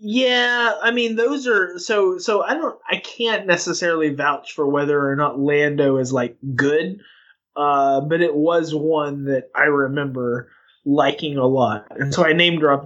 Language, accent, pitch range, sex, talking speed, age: English, American, 135-170 Hz, male, 175 wpm, 20-39